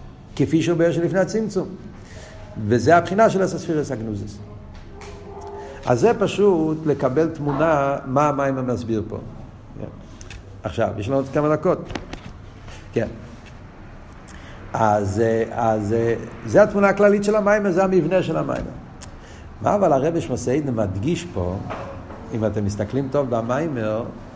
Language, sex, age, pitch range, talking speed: Hebrew, male, 50-69, 105-130 Hz, 120 wpm